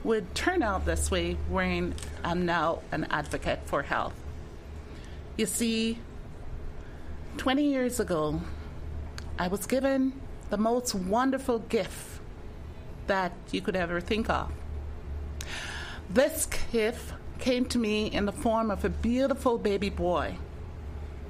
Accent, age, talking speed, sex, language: American, 30-49, 120 wpm, female, English